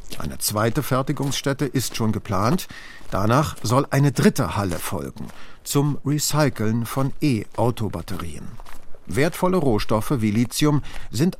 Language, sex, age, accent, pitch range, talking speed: German, male, 50-69, German, 110-145 Hz, 110 wpm